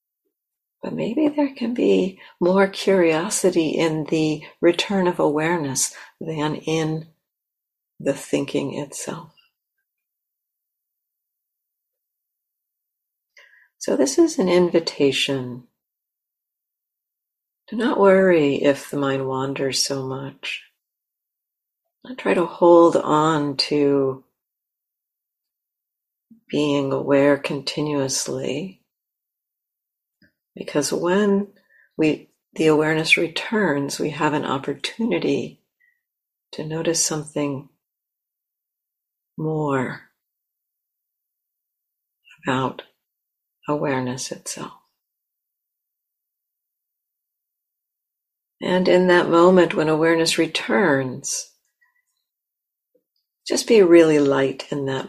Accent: American